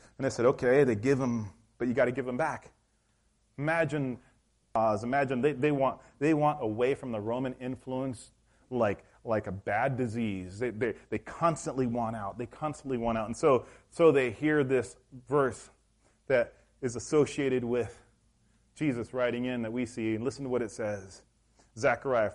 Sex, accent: male, American